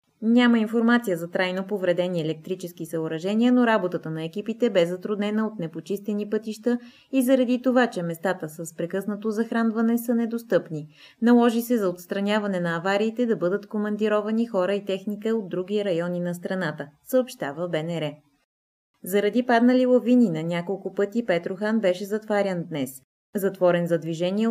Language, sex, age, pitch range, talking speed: Bulgarian, female, 20-39, 175-220 Hz, 145 wpm